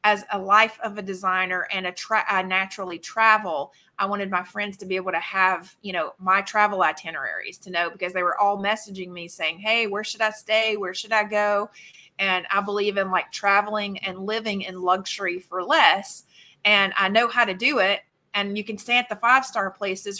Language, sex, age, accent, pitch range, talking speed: English, female, 30-49, American, 185-210 Hz, 210 wpm